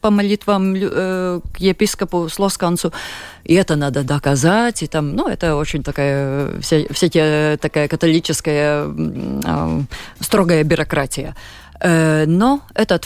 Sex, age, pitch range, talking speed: female, 30-49, 150-195 Hz, 120 wpm